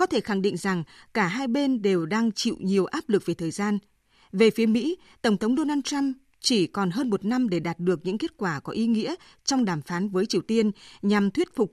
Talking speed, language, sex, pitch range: 240 wpm, Vietnamese, female, 195-270 Hz